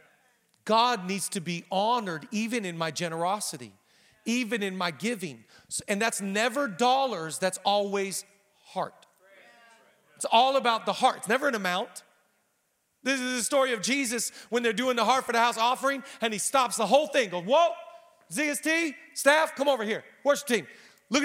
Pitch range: 205-270 Hz